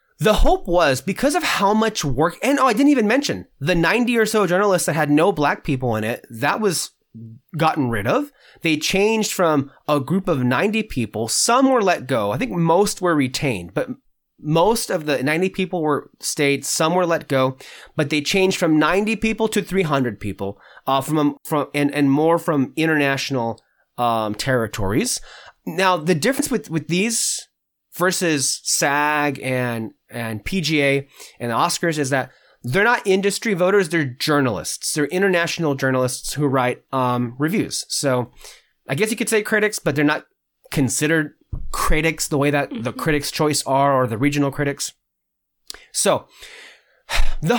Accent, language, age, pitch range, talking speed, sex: American, English, 30-49, 140-195 Hz, 170 wpm, male